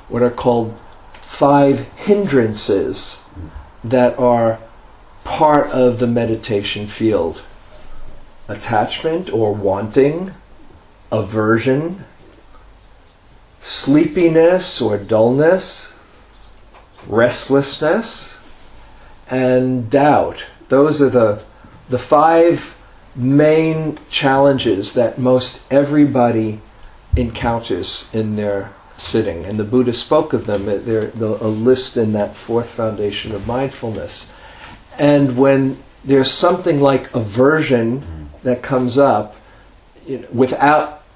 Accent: American